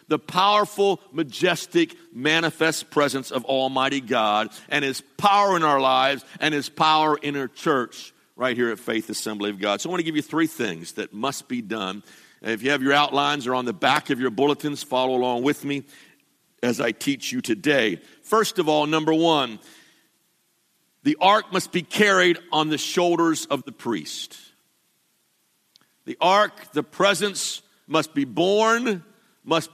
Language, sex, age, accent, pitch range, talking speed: English, male, 50-69, American, 135-180 Hz, 170 wpm